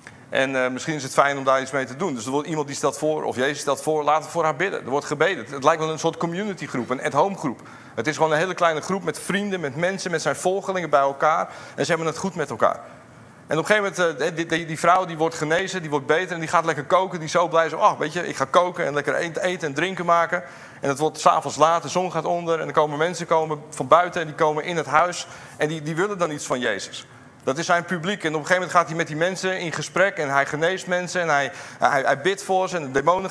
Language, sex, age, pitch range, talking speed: Dutch, male, 40-59, 150-185 Hz, 290 wpm